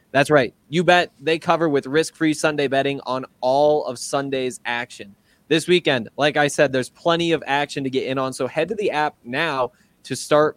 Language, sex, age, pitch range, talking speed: English, male, 20-39, 130-155 Hz, 205 wpm